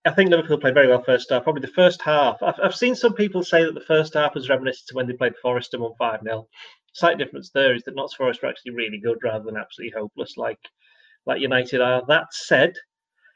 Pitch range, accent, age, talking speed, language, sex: 125-150 Hz, British, 30-49, 240 wpm, English, male